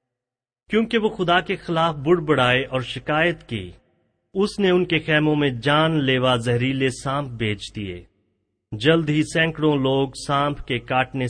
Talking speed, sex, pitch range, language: 150 wpm, male, 115-150 Hz, Urdu